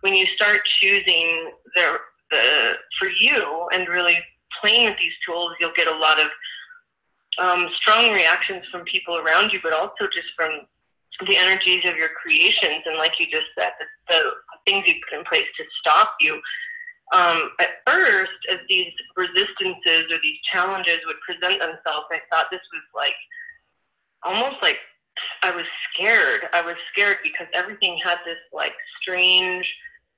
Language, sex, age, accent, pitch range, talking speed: English, female, 20-39, American, 170-210 Hz, 160 wpm